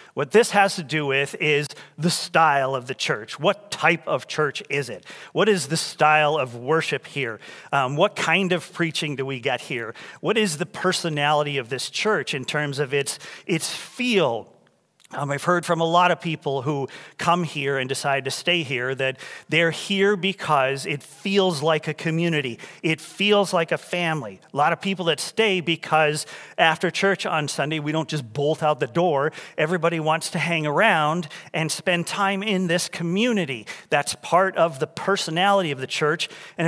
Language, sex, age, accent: English, male, 40-59, American